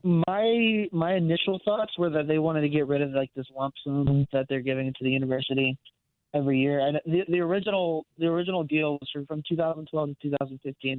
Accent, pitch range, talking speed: American, 130-155 Hz, 195 wpm